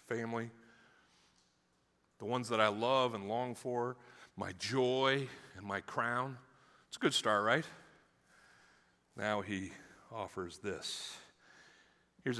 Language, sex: English, male